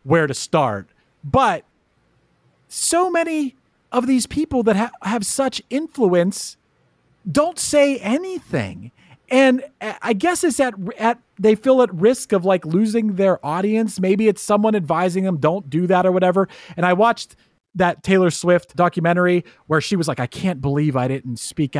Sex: male